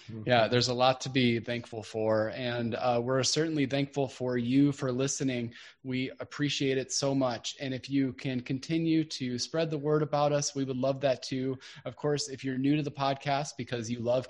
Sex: male